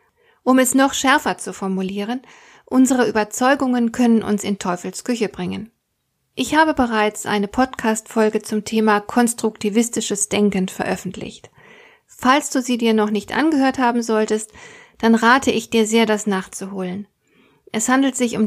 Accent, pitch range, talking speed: German, 200-235 Hz, 140 wpm